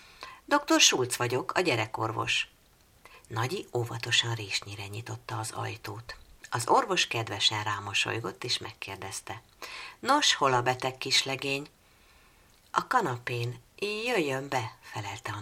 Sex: female